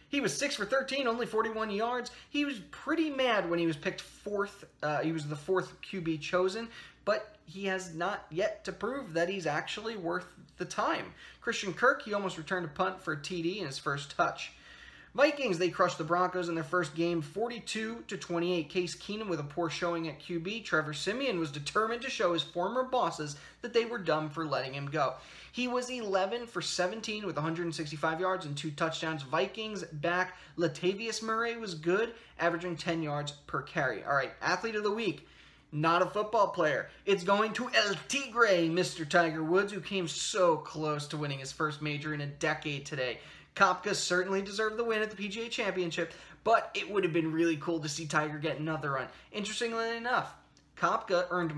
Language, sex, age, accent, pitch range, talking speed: English, male, 20-39, American, 160-215 Hz, 195 wpm